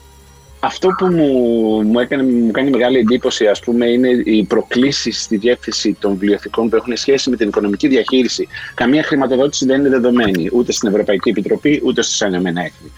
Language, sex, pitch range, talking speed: Greek, male, 100-130 Hz, 170 wpm